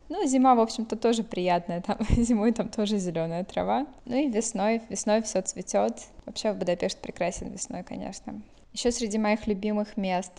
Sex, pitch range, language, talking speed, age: female, 185-215 Hz, Russian, 170 wpm, 20-39